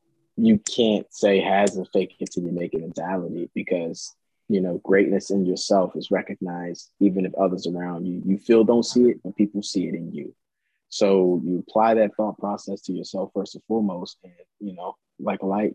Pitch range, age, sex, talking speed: 100-110 Hz, 20-39, male, 200 wpm